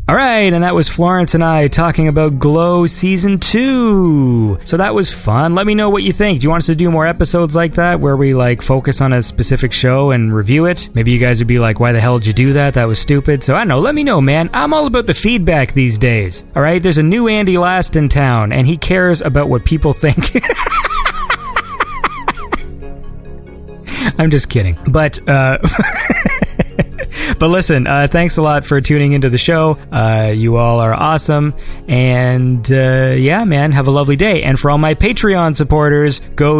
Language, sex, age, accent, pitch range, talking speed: English, male, 30-49, American, 120-160 Hz, 210 wpm